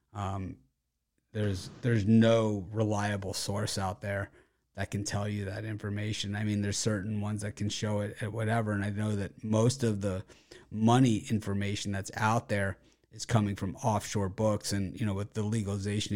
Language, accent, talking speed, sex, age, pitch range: English, American, 180 wpm, male, 30-49, 95-110 Hz